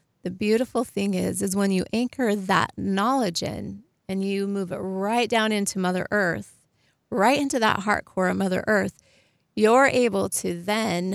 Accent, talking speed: American, 170 wpm